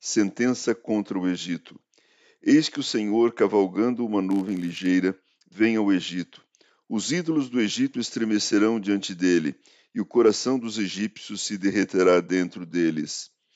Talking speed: 135 wpm